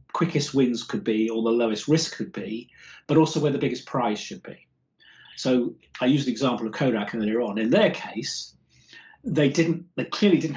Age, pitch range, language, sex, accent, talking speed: 40-59, 115-155 Hz, English, male, British, 200 wpm